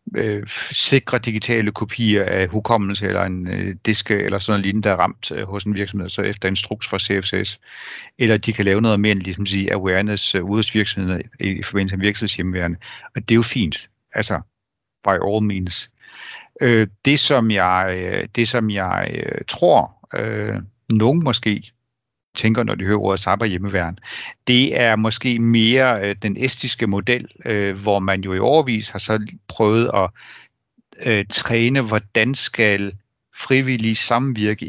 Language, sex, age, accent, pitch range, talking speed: Danish, male, 60-79, native, 100-115 Hz, 150 wpm